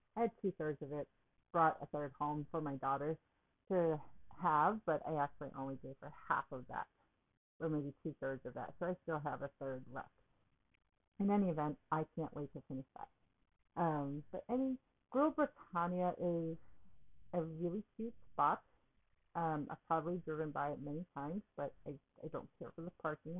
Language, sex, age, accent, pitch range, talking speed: English, female, 50-69, American, 150-180 Hz, 180 wpm